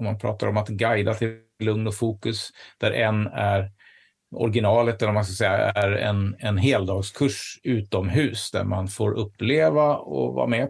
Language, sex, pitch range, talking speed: Swedish, male, 100-115 Hz, 175 wpm